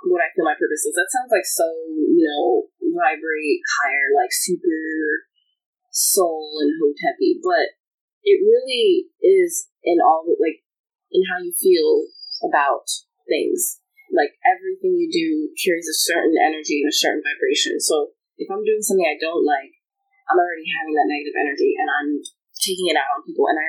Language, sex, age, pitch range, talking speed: English, female, 20-39, 315-415 Hz, 170 wpm